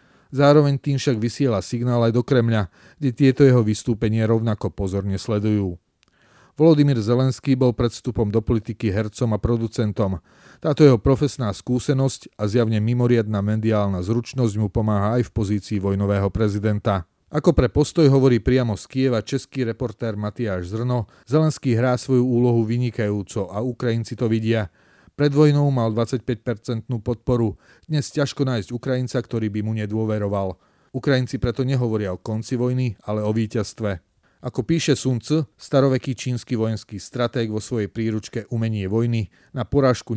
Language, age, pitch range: Slovak, 30-49, 105-125 Hz